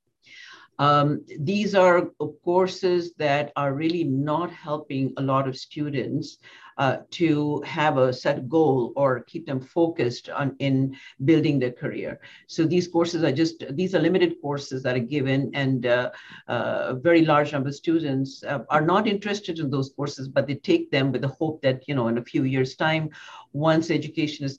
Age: 50-69